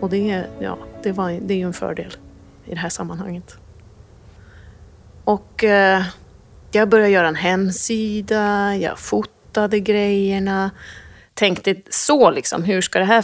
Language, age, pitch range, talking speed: English, 30-49, 170-215 Hz, 140 wpm